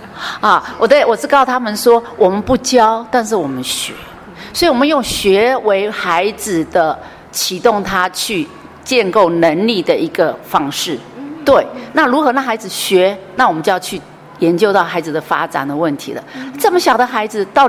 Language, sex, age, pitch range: Chinese, female, 40-59, 180-275 Hz